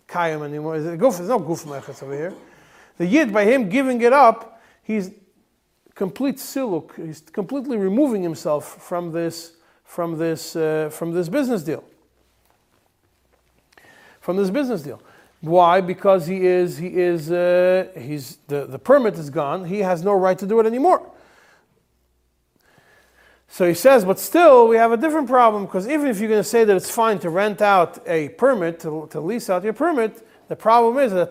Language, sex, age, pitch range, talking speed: English, male, 40-59, 160-220 Hz, 180 wpm